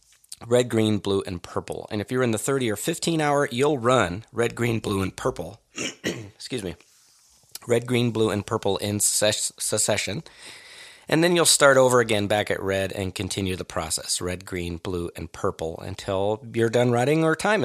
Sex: male